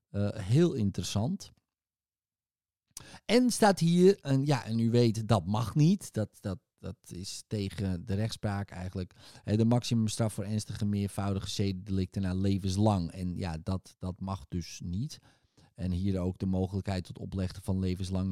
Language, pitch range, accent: Dutch, 95-135 Hz, Dutch